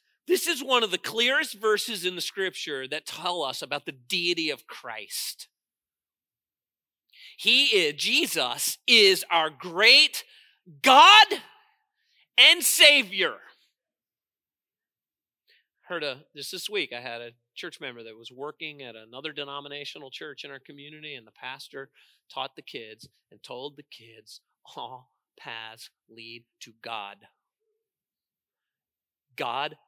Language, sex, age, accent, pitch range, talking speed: English, male, 40-59, American, 125-200 Hz, 125 wpm